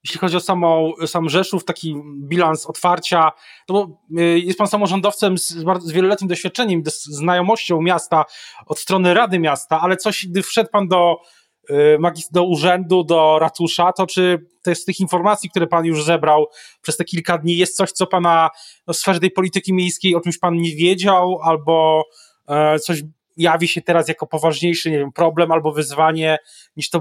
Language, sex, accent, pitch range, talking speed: Polish, male, native, 160-190 Hz, 175 wpm